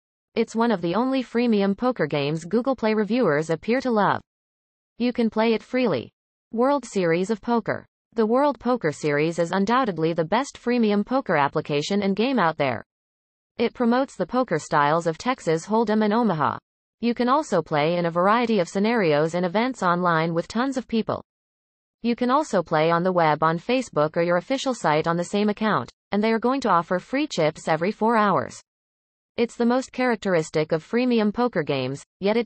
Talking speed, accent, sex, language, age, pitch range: 190 wpm, American, female, English, 30-49, 170-235 Hz